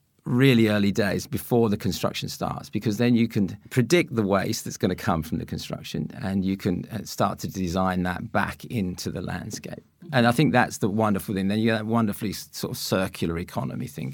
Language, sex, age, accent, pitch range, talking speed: English, male, 50-69, British, 95-120 Hz, 210 wpm